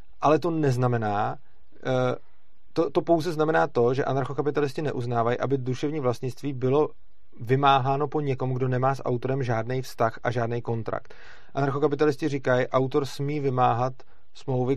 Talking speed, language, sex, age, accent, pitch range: 135 wpm, Czech, male, 30-49, native, 120-135 Hz